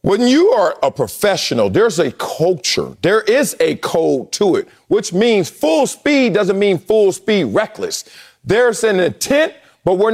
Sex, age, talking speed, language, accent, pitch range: male, 40-59, 165 wpm, English, American, 175-260 Hz